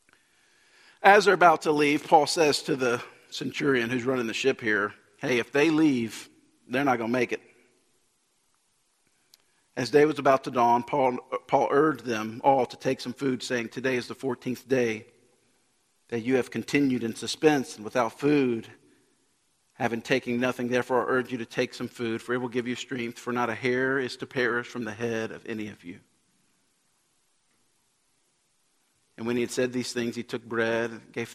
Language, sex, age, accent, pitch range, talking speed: English, male, 50-69, American, 115-130 Hz, 190 wpm